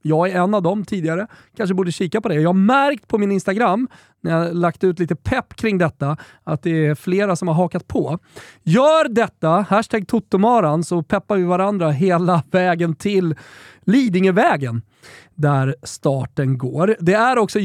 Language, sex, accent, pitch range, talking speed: Swedish, male, native, 155-205 Hz, 175 wpm